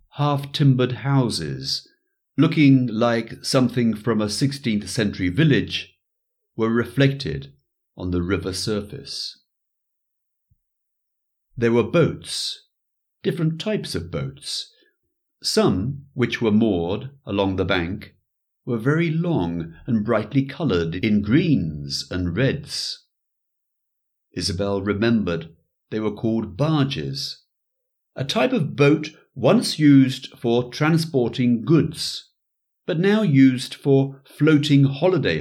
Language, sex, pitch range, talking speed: English, male, 100-145 Hz, 105 wpm